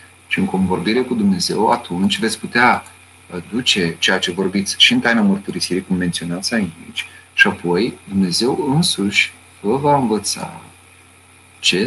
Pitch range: 90-145 Hz